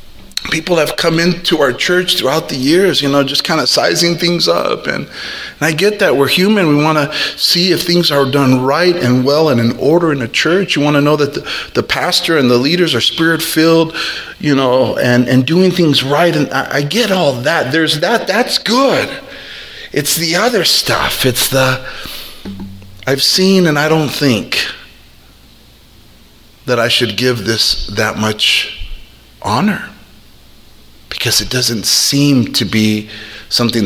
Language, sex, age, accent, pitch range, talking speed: English, male, 30-49, American, 115-175 Hz, 175 wpm